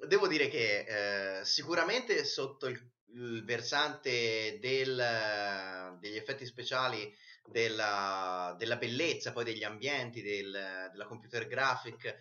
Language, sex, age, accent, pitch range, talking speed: Italian, male, 30-49, native, 105-130 Hz, 115 wpm